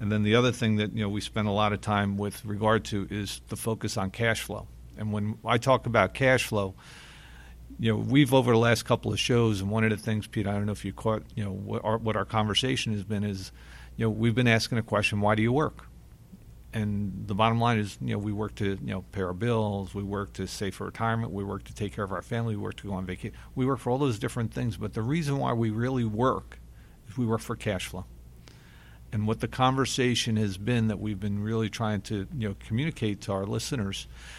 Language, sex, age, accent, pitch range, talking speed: English, male, 50-69, American, 100-115 Hz, 255 wpm